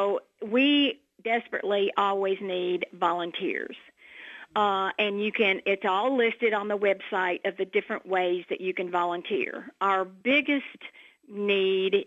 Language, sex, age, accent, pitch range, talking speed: English, female, 50-69, American, 185-225 Hz, 135 wpm